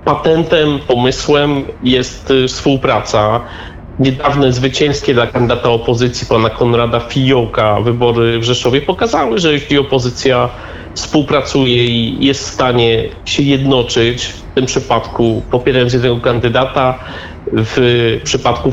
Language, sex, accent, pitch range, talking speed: Polish, male, native, 120-150 Hz, 110 wpm